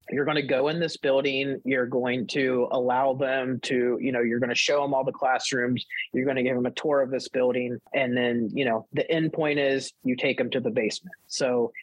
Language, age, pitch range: English, 30-49, 120-145 Hz